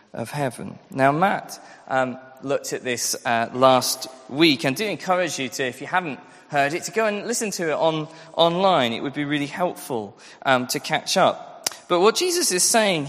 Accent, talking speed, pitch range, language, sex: British, 200 wpm, 130-195 Hz, English, male